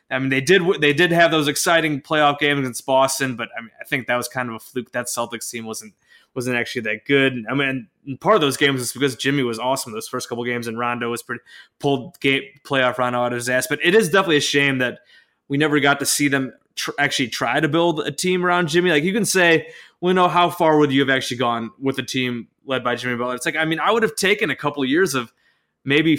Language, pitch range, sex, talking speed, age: English, 130-170 Hz, male, 275 wpm, 20-39